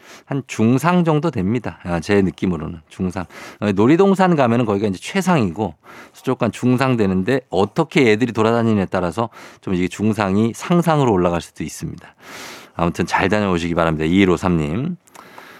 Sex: male